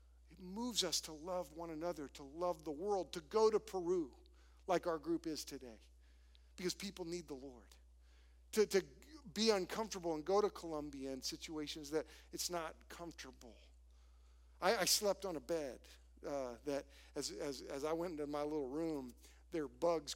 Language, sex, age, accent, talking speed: English, male, 50-69, American, 175 wpm